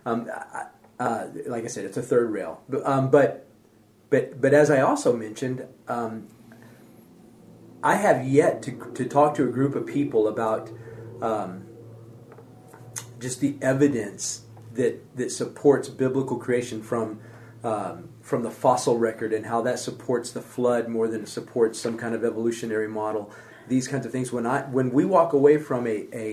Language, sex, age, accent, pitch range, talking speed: English, male, 40-59, American, 115-135 Hz, 165 wpm